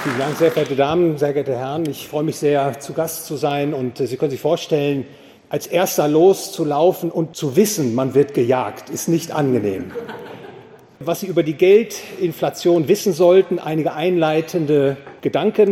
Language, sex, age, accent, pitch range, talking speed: English, male, 40-59, German, 150-190 Hz, 160 wpm